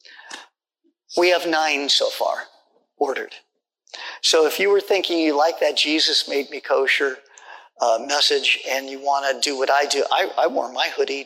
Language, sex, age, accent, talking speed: English, male, 40-59, American, 175 wpm